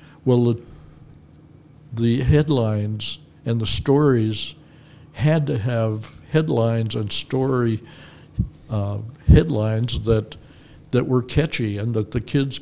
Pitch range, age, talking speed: 110-125 Hz, 60-79, 110 wpm